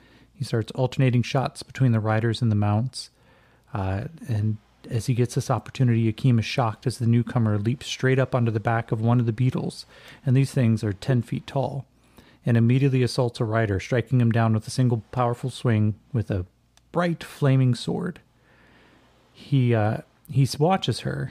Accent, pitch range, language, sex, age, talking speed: American, 115-130 Hz, English, male, 30-49, 175 wpm